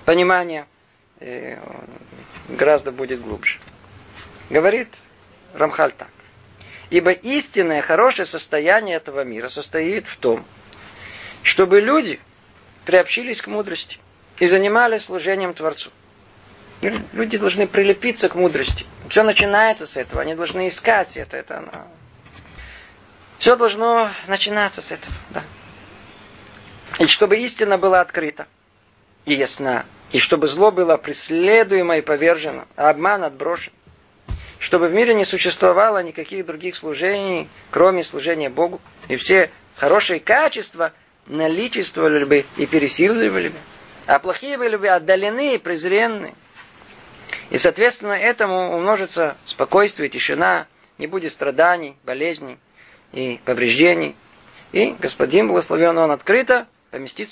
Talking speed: 115 wpm